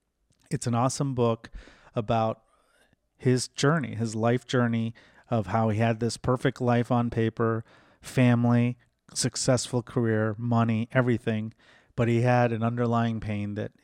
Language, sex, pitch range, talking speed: English, male, 110-125 Hz, 135 wpm